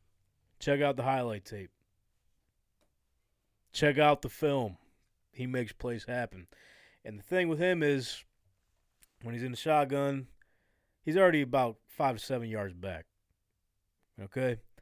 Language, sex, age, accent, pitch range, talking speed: English, male, 20-39, American, 100-155 Hz, 135 wpm